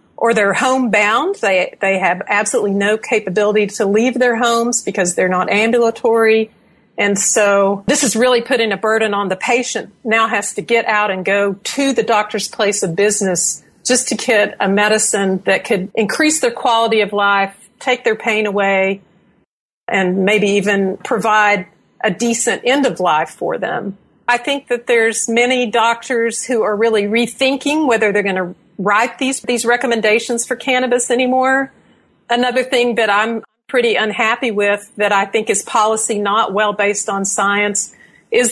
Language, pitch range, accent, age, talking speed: English, 200-235 Hz, American, 50-69, 165 wpm